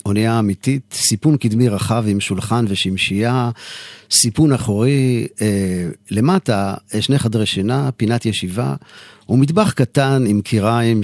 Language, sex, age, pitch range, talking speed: Hebrew, male, 50-69, 105-130 Hz, 115 wpm